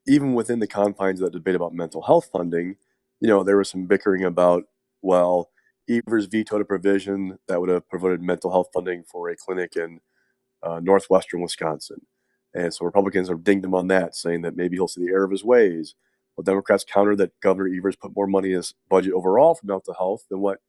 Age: 30-49